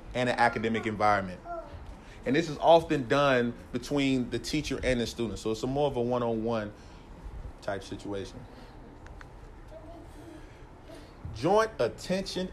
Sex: male